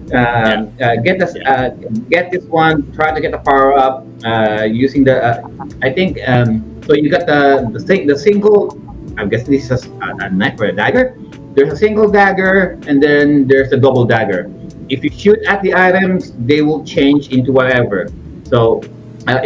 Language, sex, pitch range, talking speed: English, male, 120-150 Hz, 190 wpm